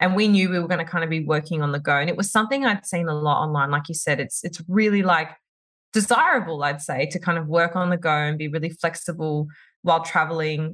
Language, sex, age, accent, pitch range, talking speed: English, female, 20-39, Australian, 155-185 Hz, 255 wpm